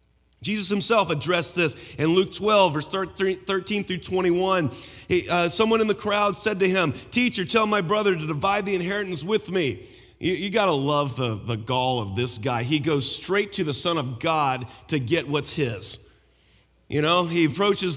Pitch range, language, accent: 145-200 Hz, English, American